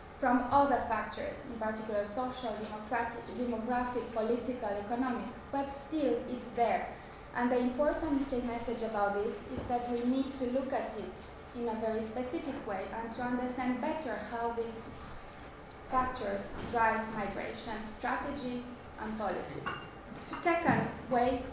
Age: 20-39